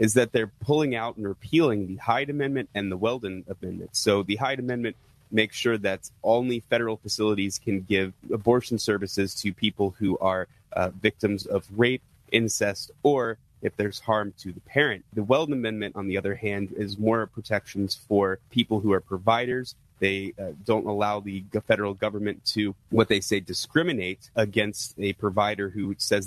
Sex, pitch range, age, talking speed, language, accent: male, 95-115 Hz, 30-49, 175 wpm, English, American